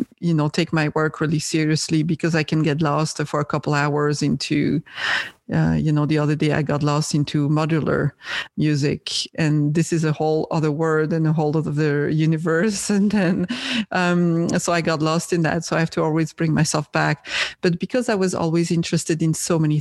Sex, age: female, 40-59